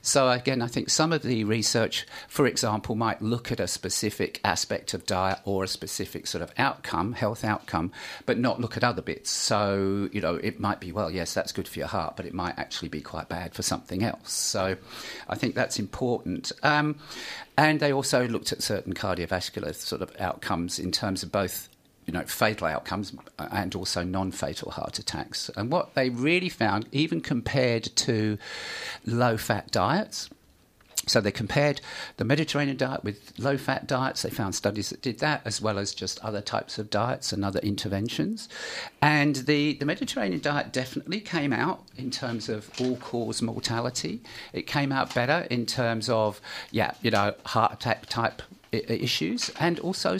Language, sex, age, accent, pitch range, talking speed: English, male, 50-69, British, 105-145 Hz, 180 wpm